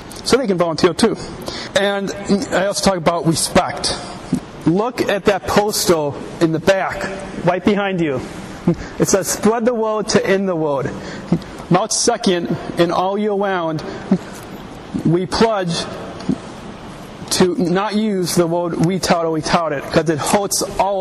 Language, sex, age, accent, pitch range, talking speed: English, male, 40-59, American, 170-200 Hz, 150 wpm